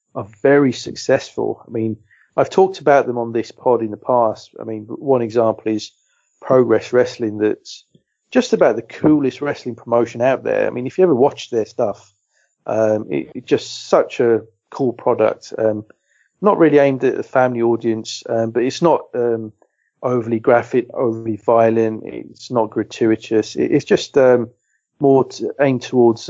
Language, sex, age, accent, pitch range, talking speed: English, male, 40-59, British, 110-125 Hz, 165 wpm